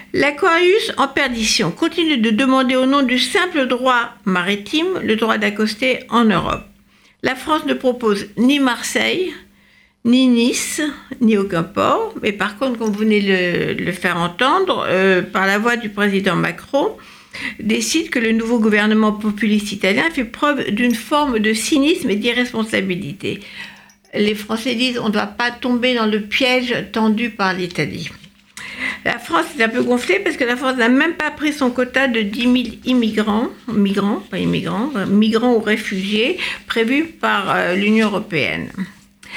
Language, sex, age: French, female, 60-79